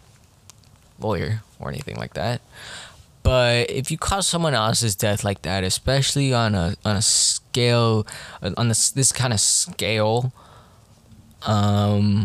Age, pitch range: 20-39, 105-130 Hz